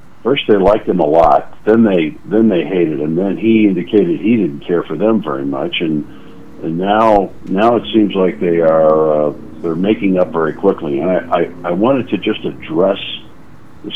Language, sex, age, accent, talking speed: English, male, 60-79, American, 200 wpm